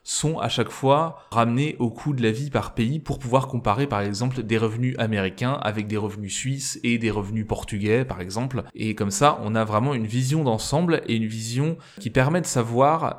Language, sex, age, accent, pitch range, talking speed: French, male, 20-39, French, 115-150 Hz, 210 wpm